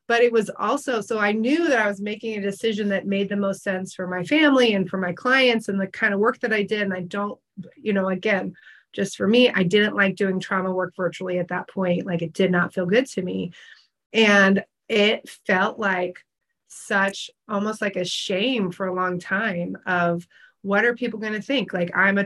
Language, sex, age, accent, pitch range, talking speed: English, female, 30-49, American, 190-230 Hz, 225 wpm